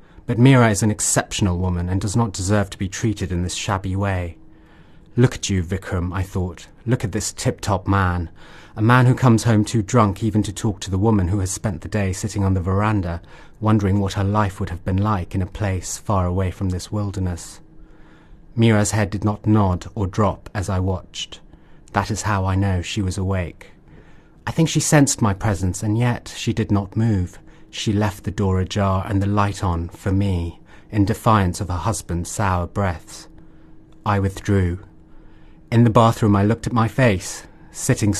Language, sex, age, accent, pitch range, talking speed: English, male, 30-49, British, 90-110 Hz, 195 wpm